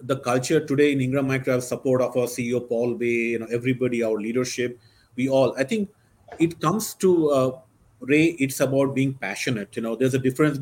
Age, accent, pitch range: 30-49, Indian, 125-155 Hz